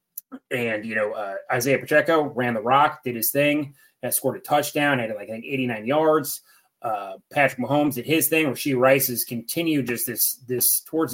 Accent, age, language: American, 20-39, English